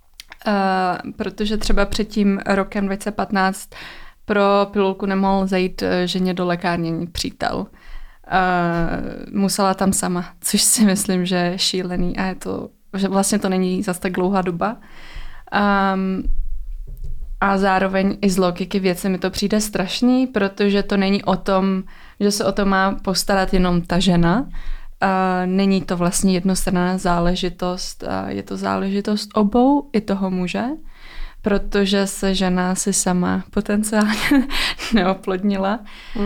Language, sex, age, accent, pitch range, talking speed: Czech, female, 20-39, native, 185-205 Hz, 130 wpm